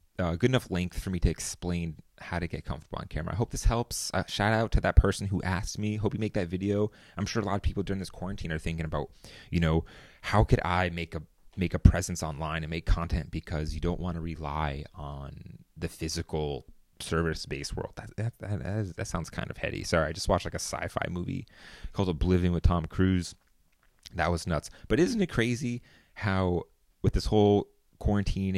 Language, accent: English, American